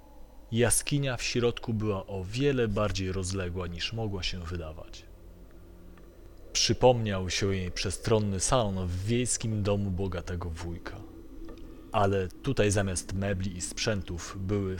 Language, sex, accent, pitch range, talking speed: Polish, male, native, 90-120 Hz, 120 wpm